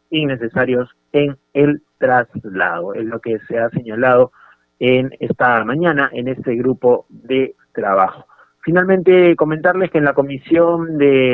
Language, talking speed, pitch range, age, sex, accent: Spanish, 130 wpm, 125-155 Hz, 30-49, male, Argentinian